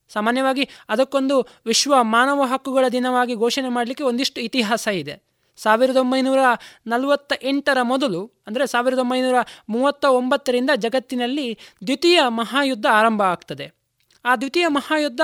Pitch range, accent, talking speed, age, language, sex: 235-285 Hz, native, 100 wpm, 20-39, Kannada, male